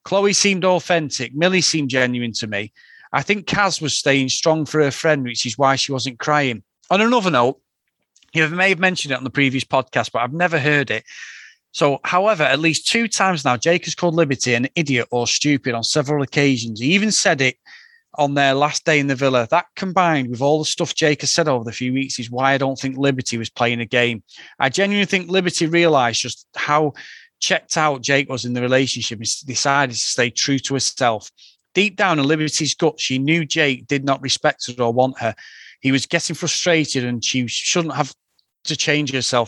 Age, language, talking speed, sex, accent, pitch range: 30-49, English, 210 wpm, male, British, 125-160 Hz